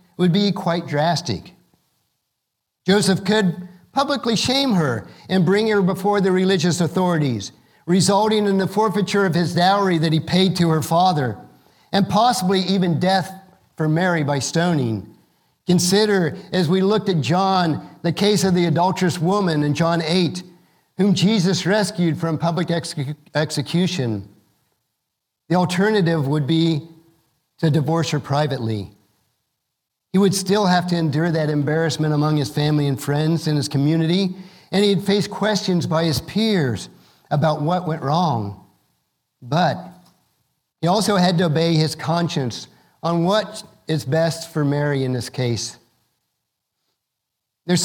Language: English